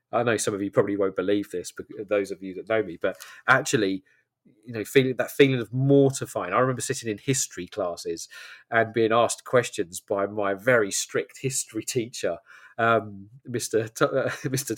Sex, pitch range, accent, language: male, 110-140 Hz, British, English